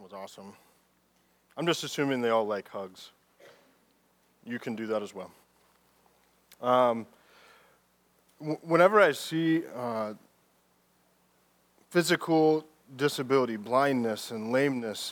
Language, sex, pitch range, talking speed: English, male, 125-160 Hz, 105 wpm